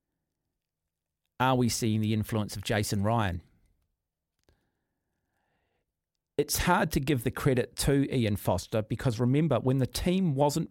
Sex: male